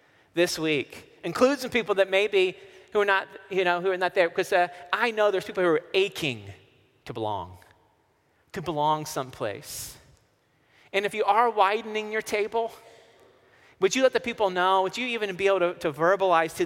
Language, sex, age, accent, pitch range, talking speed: English, male, 30-49, American, 165-230 Hz, 185 wpm